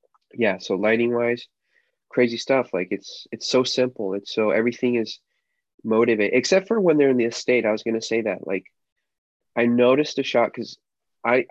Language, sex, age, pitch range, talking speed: English, male, 20-39, 105-120 Hz, 190 wpm